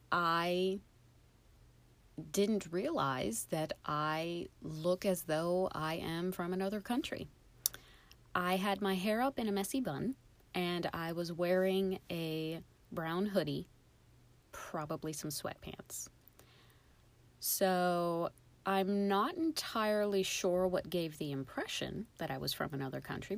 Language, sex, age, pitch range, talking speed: English, female, 30-49, 155-195 Hz, 120 wpm